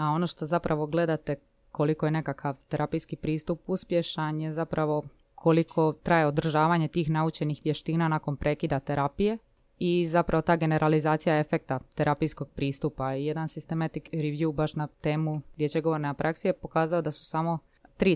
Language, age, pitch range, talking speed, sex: Croatian, 20-39, 145-170 Hz, 140 wpm, female